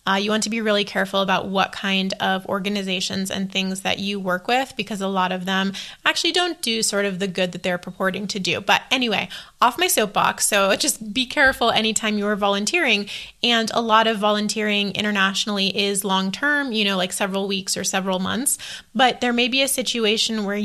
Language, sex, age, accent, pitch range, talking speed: English, female, 20-39, American, 195-235 Hz, 210 wpm